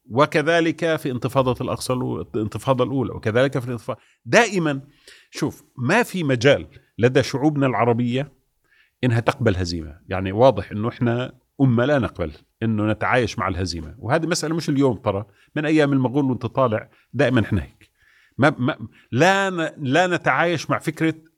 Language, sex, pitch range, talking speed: Arabic, male, 100-145 Hz, 140 wpm